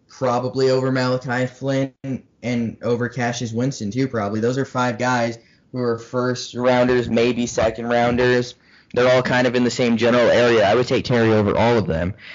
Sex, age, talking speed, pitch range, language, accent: male, 10-29, 175 wpm, 110-125 Hz, English, American